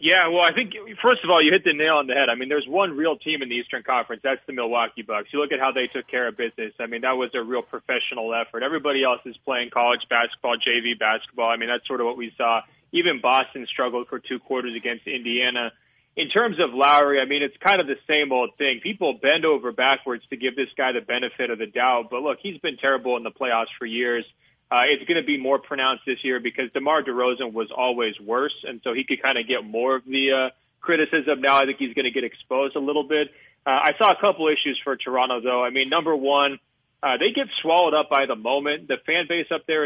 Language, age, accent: English, 20-39, American